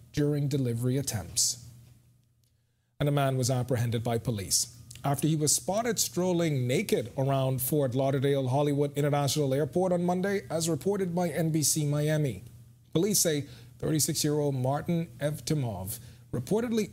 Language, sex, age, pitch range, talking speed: English, male, 40-59, 120-150 Hz, 125 wpm